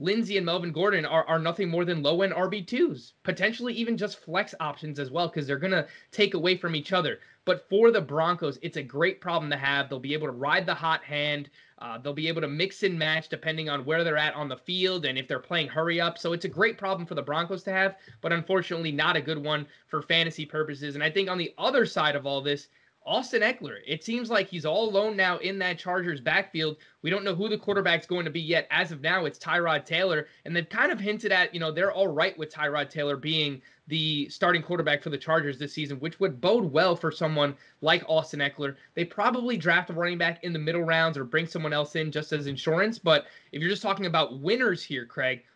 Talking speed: 240 wpm